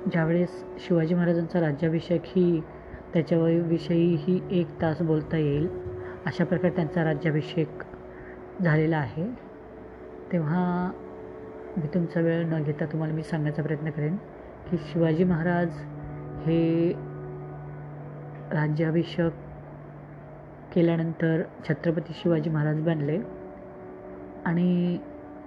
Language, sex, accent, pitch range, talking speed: Marathi, female, native, 155-180 Hz, 95 wpm